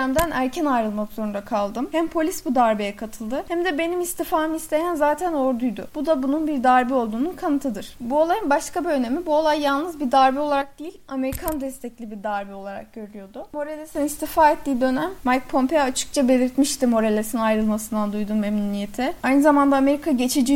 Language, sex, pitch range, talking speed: Turkish, female, 235-305 Hz, 165 wpm